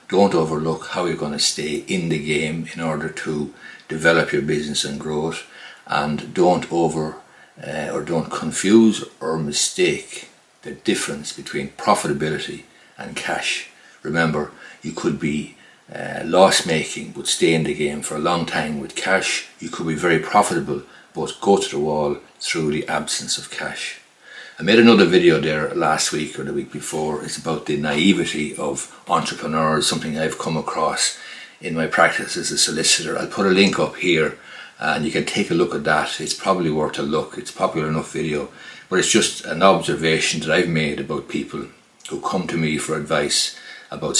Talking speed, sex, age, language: 180 wpm, male, 60-79, English